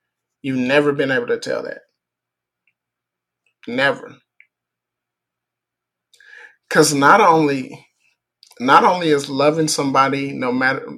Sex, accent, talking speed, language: male, American, 100 wpm, English